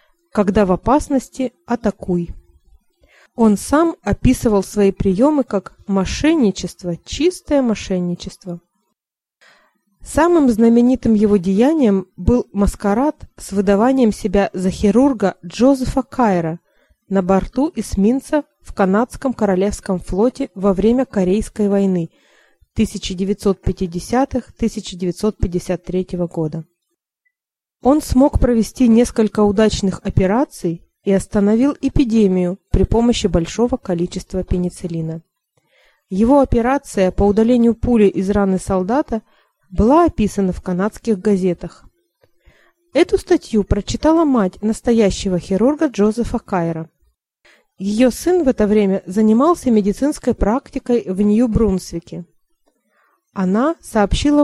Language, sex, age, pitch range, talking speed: Russian, female, 20-39, 190-255 Hz, 95 wpm